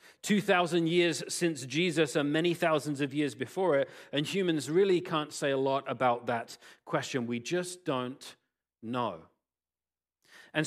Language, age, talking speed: English, 40-59, 145 wpm